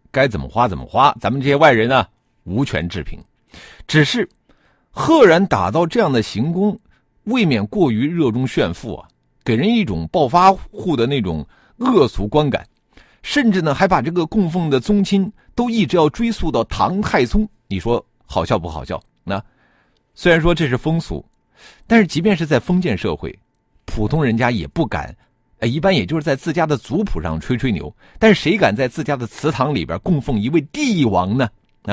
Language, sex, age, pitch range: Chinese, male, 50-69, 110-165 Hz